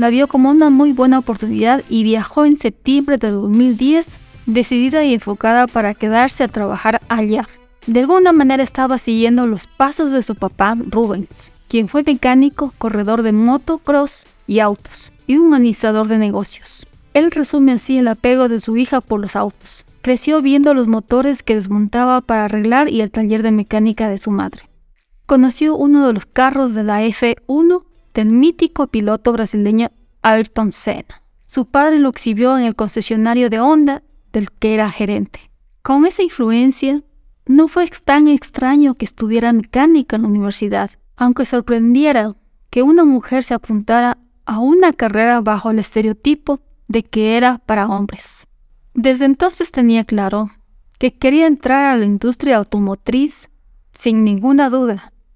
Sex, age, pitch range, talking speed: female, 20-39, 220-275 Hz, 155 wpm